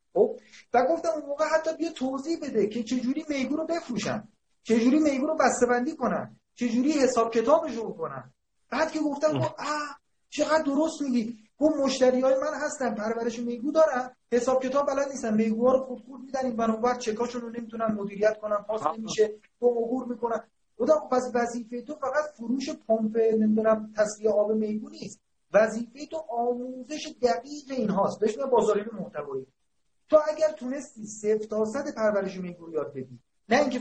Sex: male